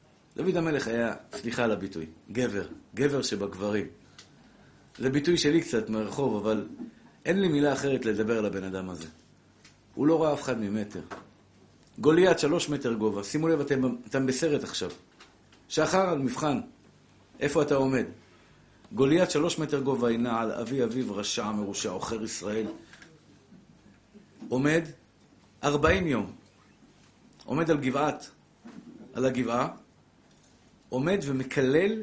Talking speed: 125 wpm